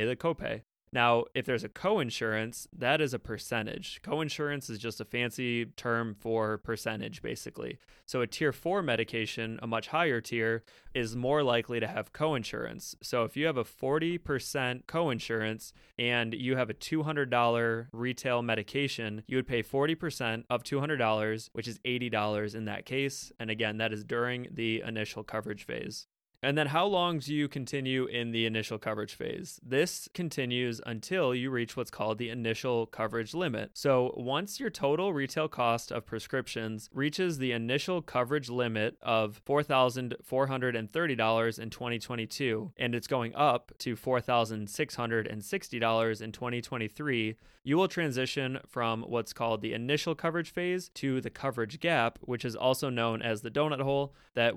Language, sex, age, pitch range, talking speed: English, male, 20-39, 115-140 Hz, 155 wpm